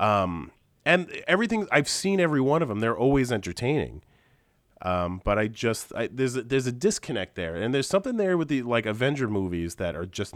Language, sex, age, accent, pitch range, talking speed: English, male, 30-49, American, 90-130 Hz, 205 wpm